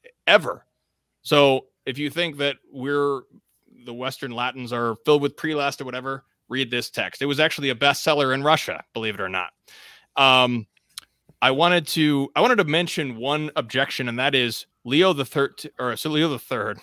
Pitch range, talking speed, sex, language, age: 120-145 Hz, 180 wpm, male, English, 30-49